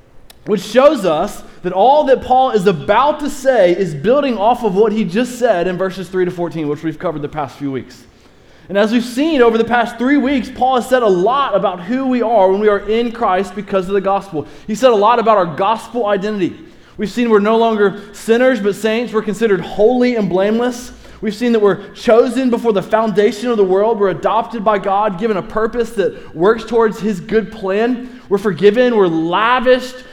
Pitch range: 190-240 Hz